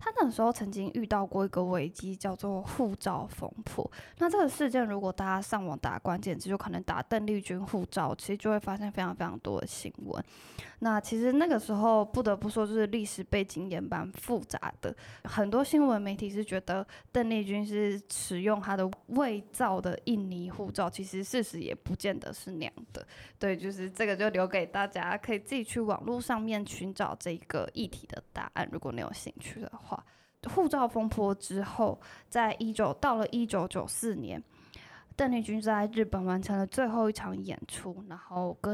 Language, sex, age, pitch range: Chinese, female, 10-29, 190-230 Hz